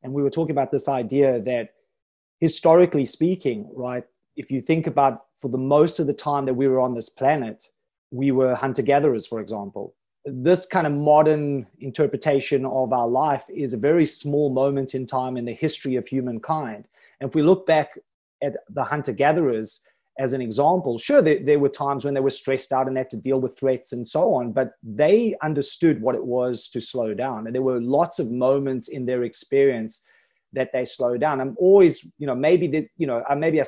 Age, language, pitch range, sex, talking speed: 30-49, English, 130-160 Hz, male, 205 wpm